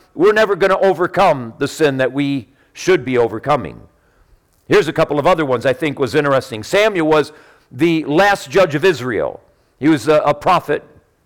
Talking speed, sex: 175 wpm, male